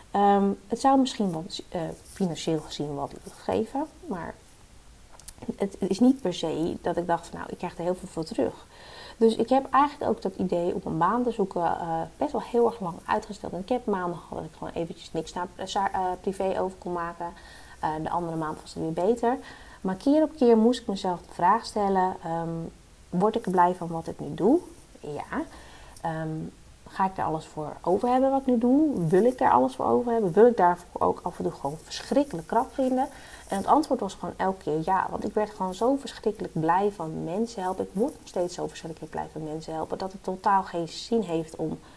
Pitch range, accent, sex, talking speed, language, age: 170-230 Hz, Dutch, female, 225 wpm, Dutch, 30-49